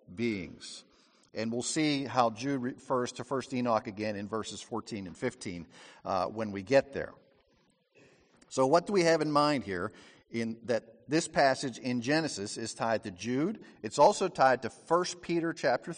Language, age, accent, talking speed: English, 50-69, American, 175 wpm